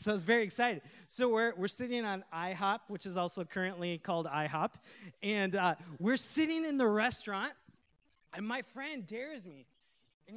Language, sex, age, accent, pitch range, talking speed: English, male, 20-39, American, 165-240 Hz, 175 wpm